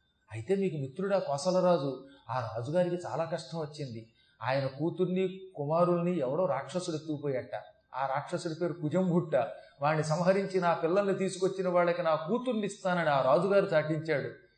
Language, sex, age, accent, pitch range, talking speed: Telugu, male, 30-49, native, 140-180 Hz, 130 wpm